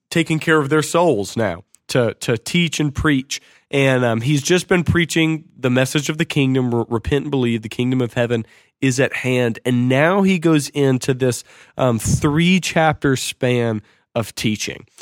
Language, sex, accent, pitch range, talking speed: English, male, American, 120-150 Hz, 170 wpm